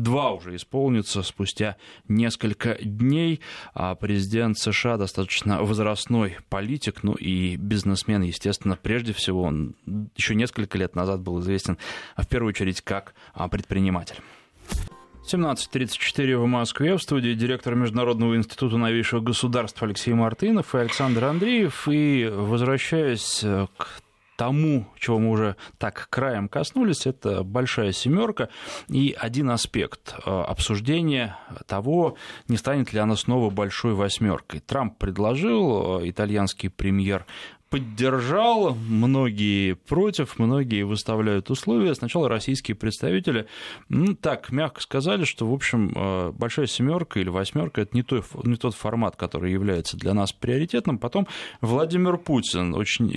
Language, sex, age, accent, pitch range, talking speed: Russian, male, 20-39, native, 100-130 Hz, 120 wpm